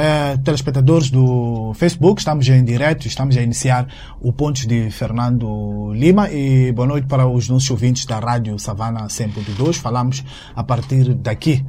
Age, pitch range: 20-39, 120-145 Hz